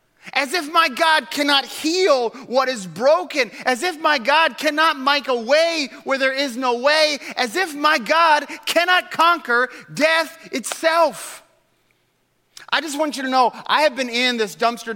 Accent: American